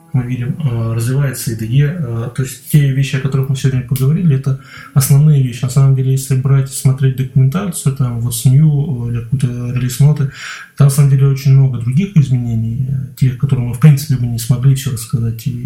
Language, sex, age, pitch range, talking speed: Russian, male, 20-39, 125-140 Hz, 175 wpm